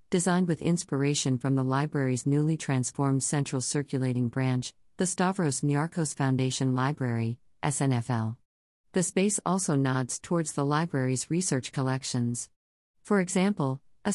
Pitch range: 130-160 Hz